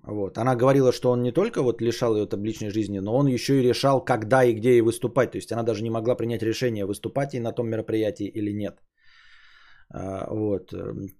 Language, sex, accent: Russian, male, native